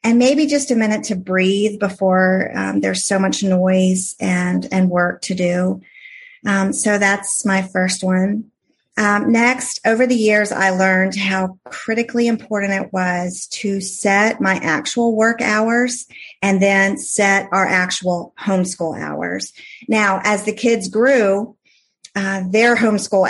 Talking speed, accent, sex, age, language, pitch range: 145 wpm, American, female, 40-59, English, 180-205 Hz